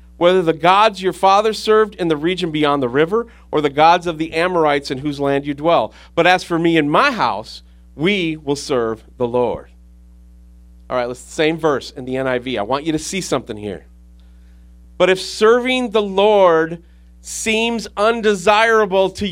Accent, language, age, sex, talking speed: American, English, 40-59, male, 185 wpm